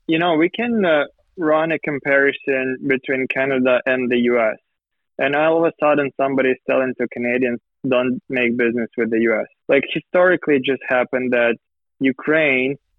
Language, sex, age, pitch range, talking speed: Ukrainian, male, 20-39, 125-145 Hz, 160 wpm